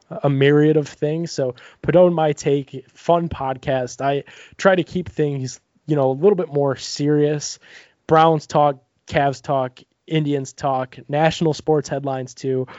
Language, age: English, 20-39